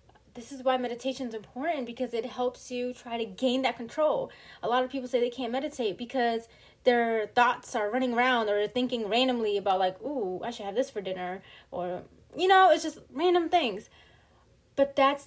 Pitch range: 205-280 Hz